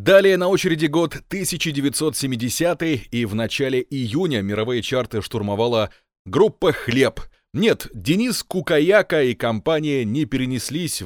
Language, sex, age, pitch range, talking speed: Russian, male, 30-49, 110-140 Hz, 115 wpm